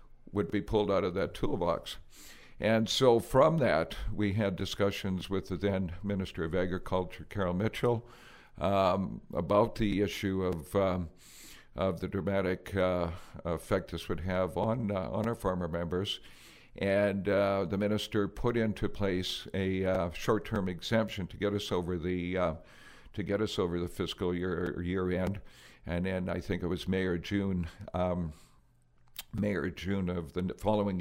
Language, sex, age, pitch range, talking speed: English, male, 60-79, 90-105 Hz, 165 wpm